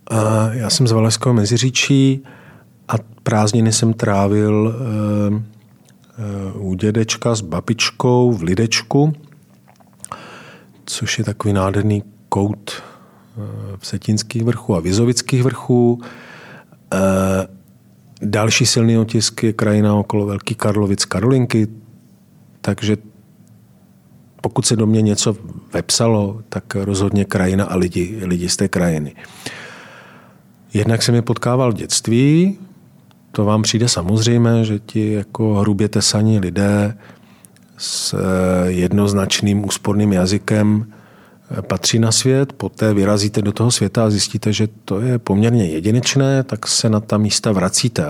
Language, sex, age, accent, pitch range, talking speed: Czech, male, 40-59, native, 100-115 Hz, 115 wpm